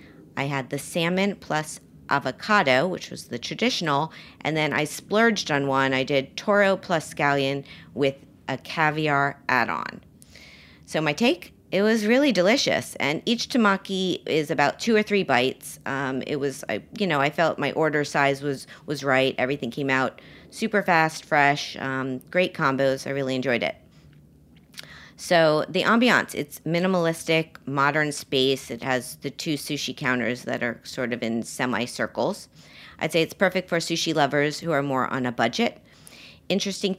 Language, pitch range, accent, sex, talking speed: English, 130-175 Hz, American, female, 165 wpm